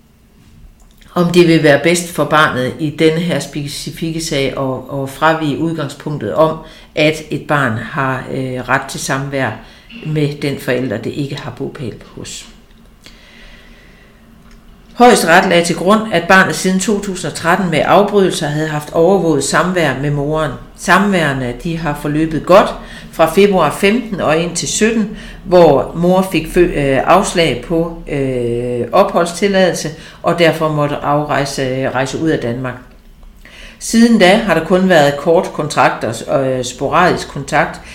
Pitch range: 145-185 Hz